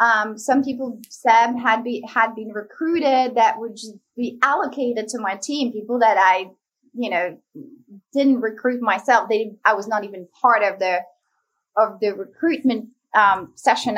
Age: 30-49